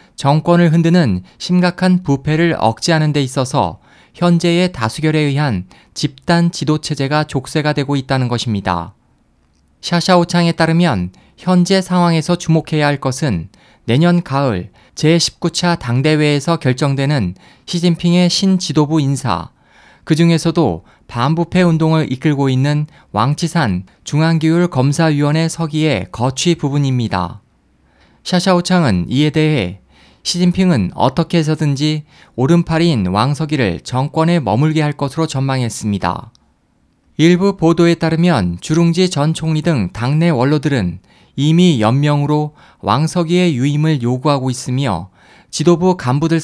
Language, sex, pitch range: Korean, male, 130-170 Hz